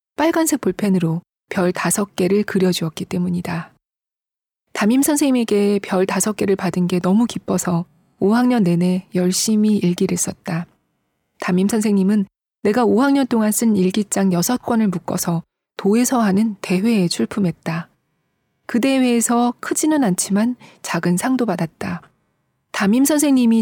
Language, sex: Korean, female